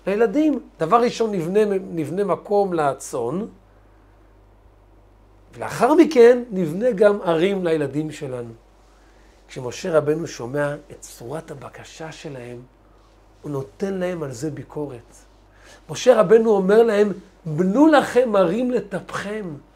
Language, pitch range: Hebrew, 150-215 Hz